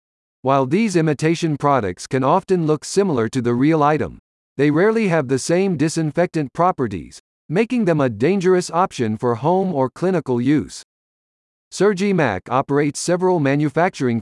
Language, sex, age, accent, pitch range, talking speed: English, male, 50-69, American, 125-175 Hz, 145 wpm